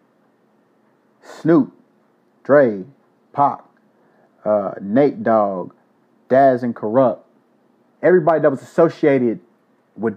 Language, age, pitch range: English, 30-49, 120-150 Hz